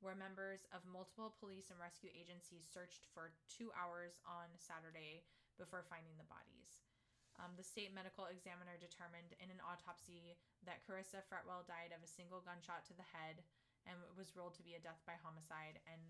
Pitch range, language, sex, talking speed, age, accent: 165-190 Hz, English, female, 180 wpm, 20-39, American